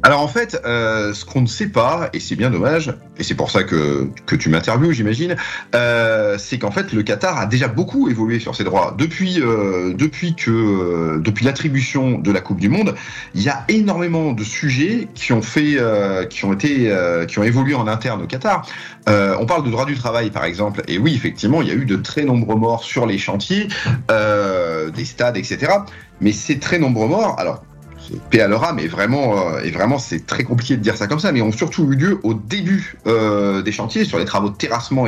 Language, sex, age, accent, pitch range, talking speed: French, male, 30-49, French, 105-145 Hz, 220 wpm